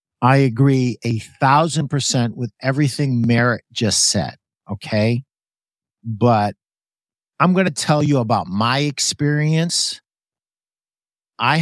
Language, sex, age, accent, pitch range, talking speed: English, male, 50-69, American, 110-135 Hz, 110 wpm